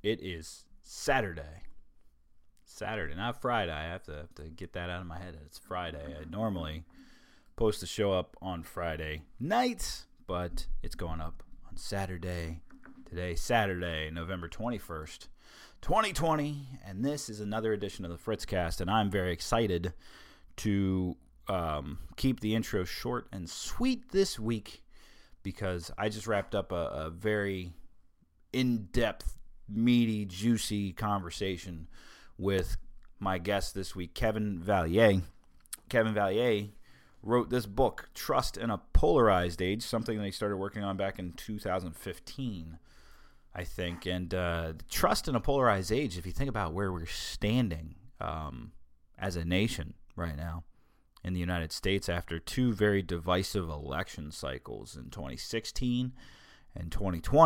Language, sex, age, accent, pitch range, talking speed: English, male, 30-49, American, 85-110 Hz, 140 wpm